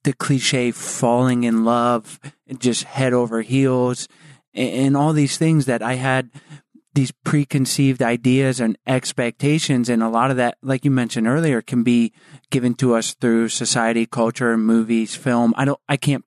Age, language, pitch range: 30-49, English, 120-145 Hz